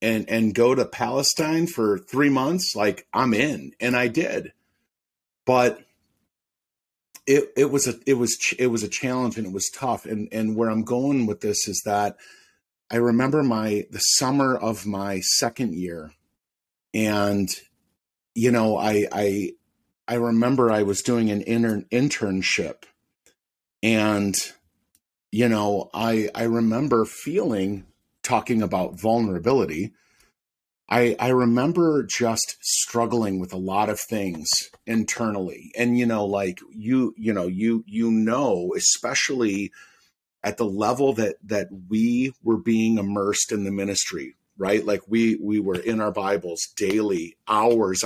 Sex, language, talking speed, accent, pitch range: male, English, 145 wpm, American, 100-120 Hz